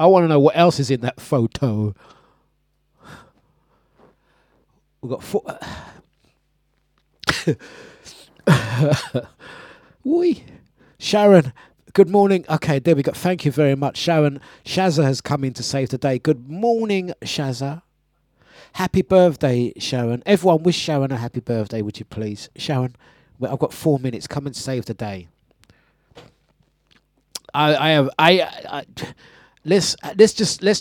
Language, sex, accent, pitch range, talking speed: English, male, British, 115-155 Hz, 130 wpm